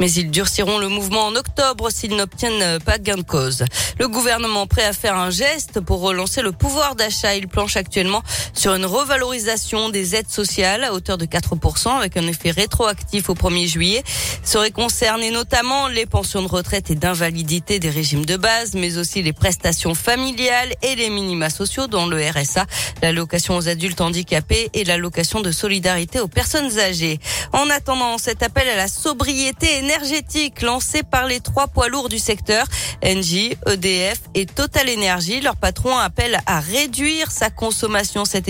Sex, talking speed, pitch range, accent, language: female, 175 wpm, 180-235 Hz, French, French